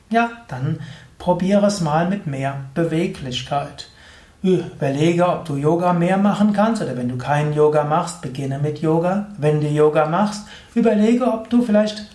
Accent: German